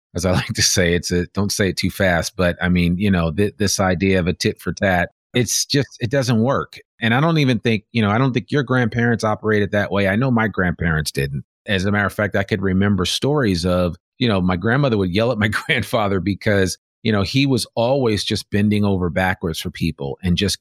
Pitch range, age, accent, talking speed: 95-120 Hz, 30-49, American, 240 wpm